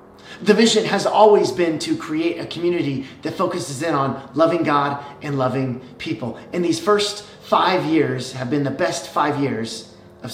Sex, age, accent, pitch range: male, 30-49, American, 125-175 Hz